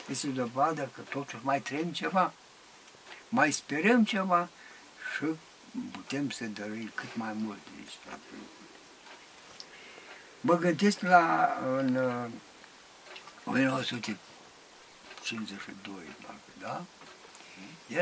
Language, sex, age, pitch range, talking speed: Romanian, male, 60-79, 140-210 Hz, 75 wpm